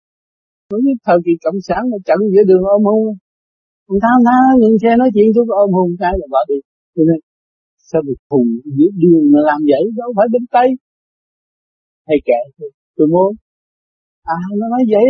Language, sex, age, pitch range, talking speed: Vietnamese, male, 60-79, 185-260 Hz, 185 wpm